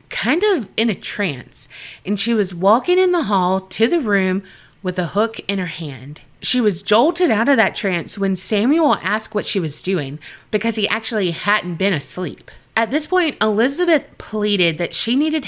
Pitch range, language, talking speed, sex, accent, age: 190-265 Hz, English, 190 wpm, female, American, 30-49